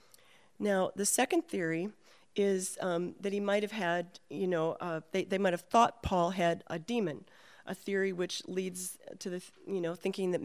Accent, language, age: American, English, 40-59